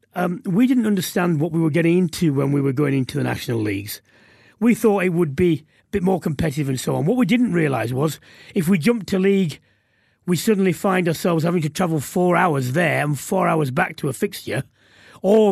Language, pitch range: English, 150-195 Hz